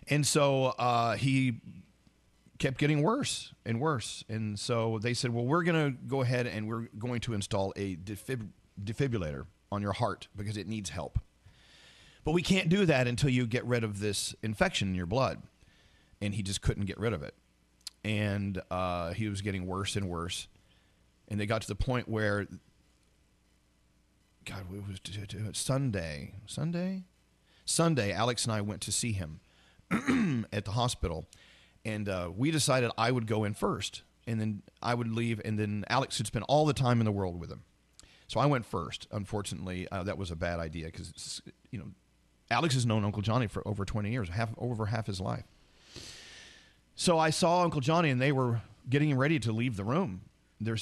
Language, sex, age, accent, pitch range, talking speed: English, male, 40-59, American, 95-125 Hz, 190 wpm